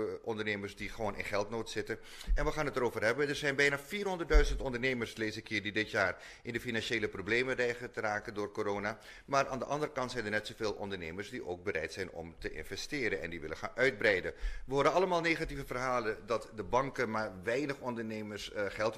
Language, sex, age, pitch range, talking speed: Dutch, male, 30-49, 100-145 Hz, 205 wpm